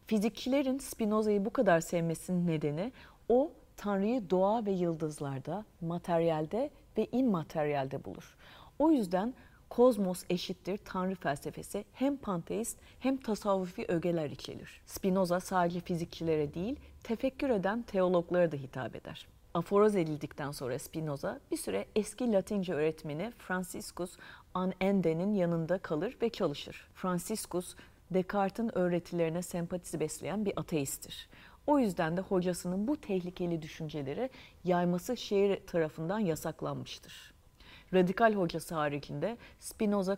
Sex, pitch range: female, 165-210 Hz